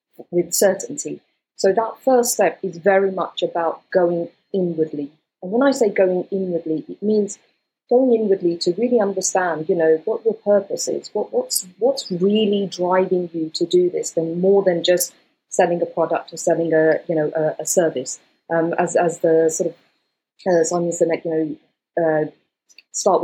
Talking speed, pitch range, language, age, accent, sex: 180 wpm, 170-205 Hz, English, 40-59, British, female